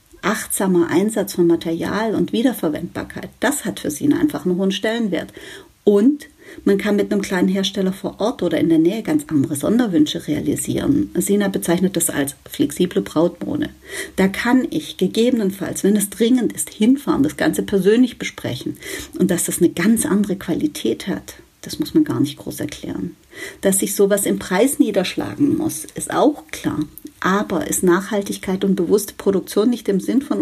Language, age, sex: German, 50-69, female